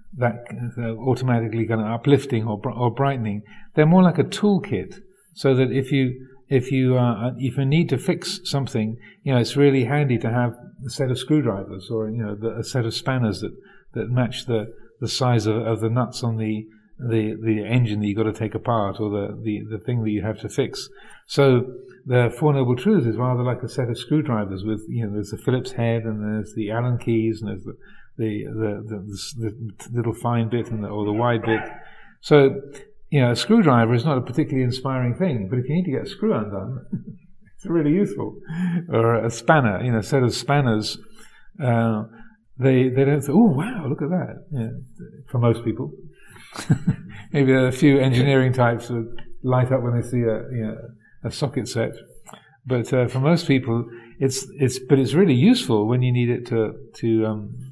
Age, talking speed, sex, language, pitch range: 50-69, 205 wpm, male, English, 115-140 Hz